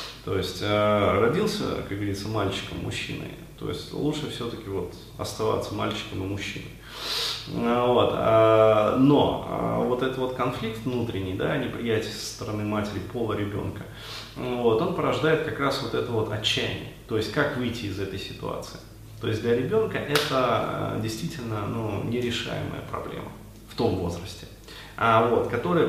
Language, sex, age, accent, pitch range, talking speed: Russian, male, 30-49, native, 105-130 Hz, 130 wpm